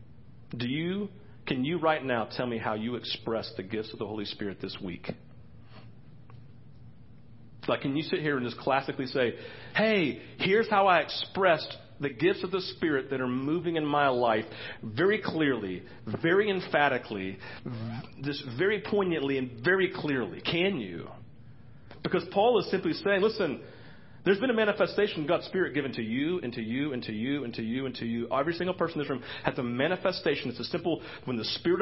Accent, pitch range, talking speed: American, 120-175 Hz, 190 wpm